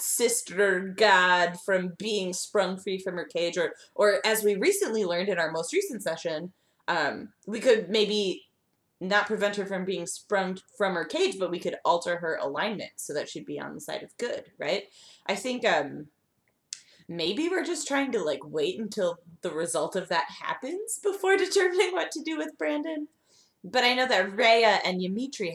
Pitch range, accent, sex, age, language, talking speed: 165-225 Hz, American, female, 20-39, English, 185 wpm